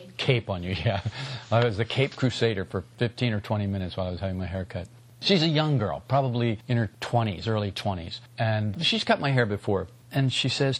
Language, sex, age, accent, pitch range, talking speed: English, male, 50-69, American, 110-135 Hz, 220 wpm